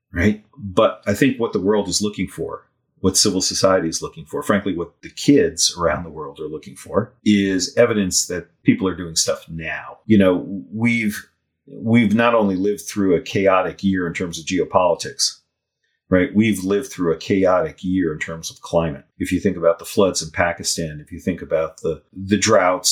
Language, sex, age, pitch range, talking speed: English, male, 40-59, 80-95 Hz, 195 wpm